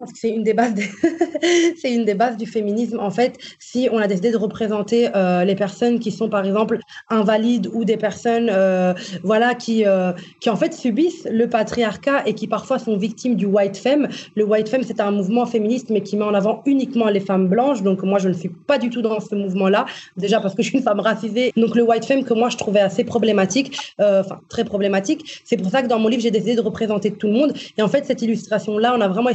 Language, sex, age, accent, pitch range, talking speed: French, female, 20-39, French, 205-245 Hz, 245 wpm